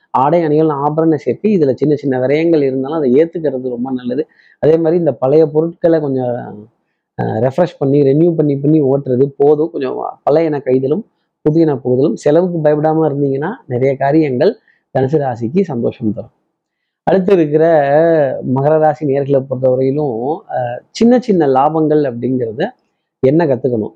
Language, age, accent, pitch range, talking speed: Tamil, 30-49, native, 130-165 Hz, 130 wpm